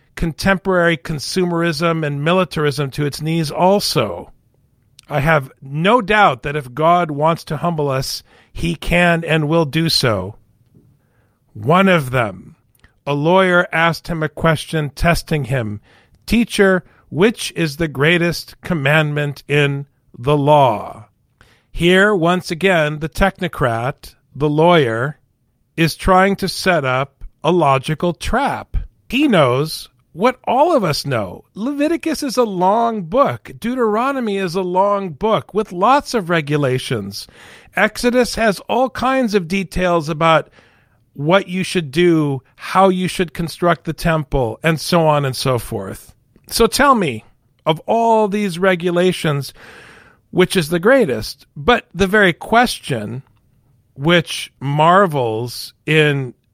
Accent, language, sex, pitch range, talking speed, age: American, English, male, 135-185 Hz, 130 wpm, 50-69